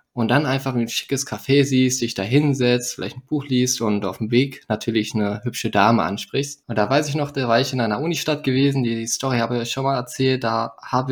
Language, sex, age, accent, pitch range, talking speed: German, male, 20-39, German, 115-135 Hz, 245 wpm